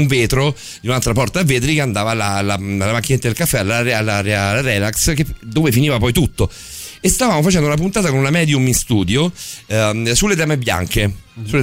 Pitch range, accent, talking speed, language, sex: 95-130 Hz, native, 210 wpm, Italian, male